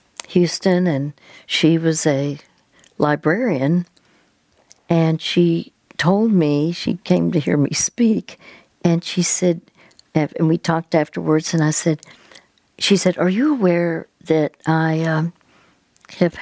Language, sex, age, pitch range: English, female, 60-79, 155-175 Hz